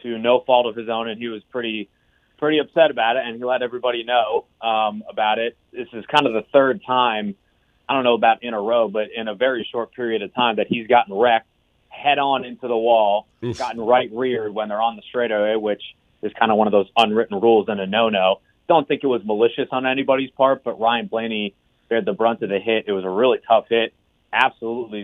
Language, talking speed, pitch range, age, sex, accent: English, 230 wpm, 110-130 Hz, 30-49, male, American